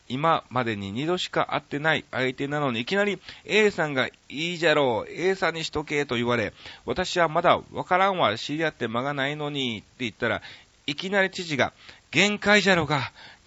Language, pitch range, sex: Japanese, 120-170 Hz, male